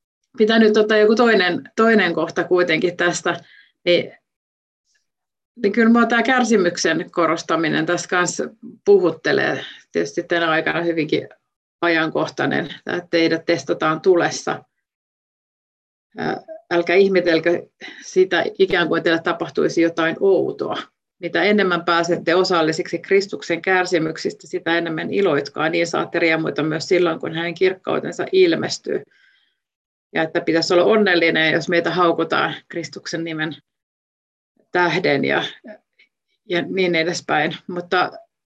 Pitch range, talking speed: 170-205 Hz, 110 wpm